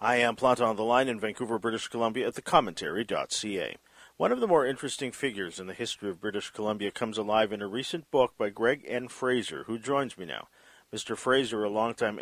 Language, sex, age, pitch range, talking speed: English, male, 50-69, 105-125 Hz, 205 wpm